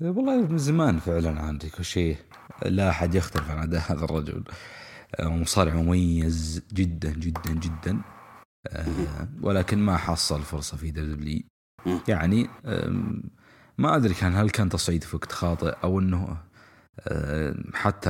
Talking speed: 120 wpm